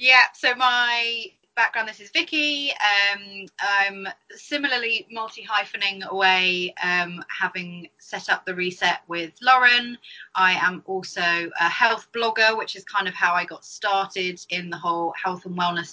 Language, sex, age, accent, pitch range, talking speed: English, female, 20-39, British, 165-190 Hz, 155 wpm